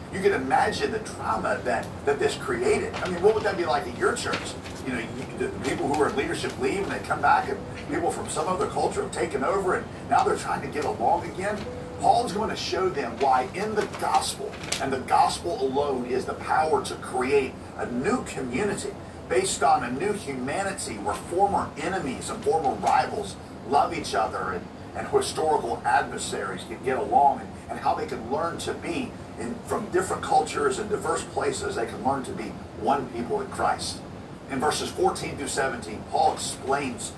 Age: 50-69